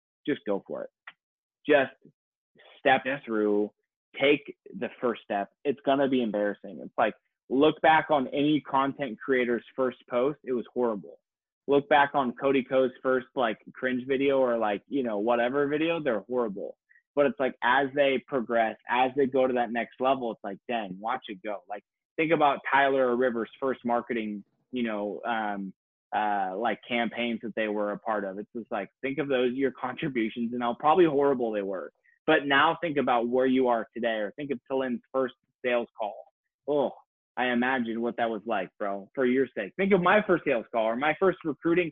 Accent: American